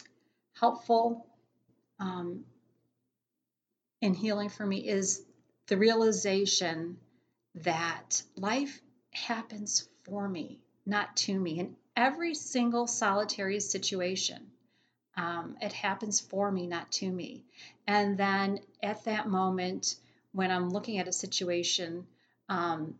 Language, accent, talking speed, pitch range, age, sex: English, American, 110 wpm, 185-230 Hz, 40-59, female